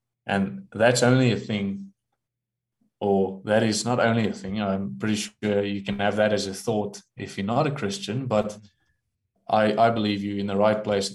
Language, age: English, 20-39